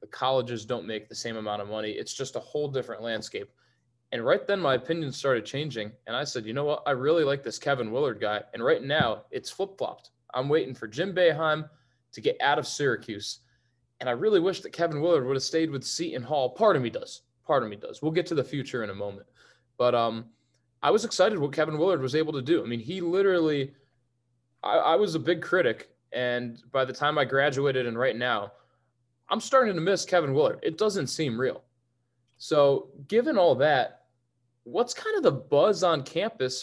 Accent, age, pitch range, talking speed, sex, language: American, 20-39, 120-165 Hz, 215 wpm, male, English